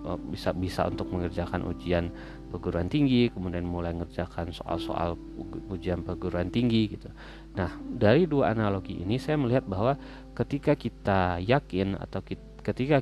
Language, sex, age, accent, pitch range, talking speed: Indonesian, male, 30-49, native, 90-115 Hz, 125 wpm